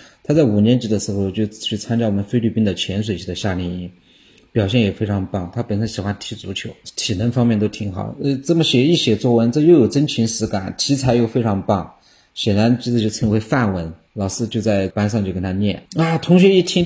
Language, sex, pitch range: Chinese, male, 105-130 Hz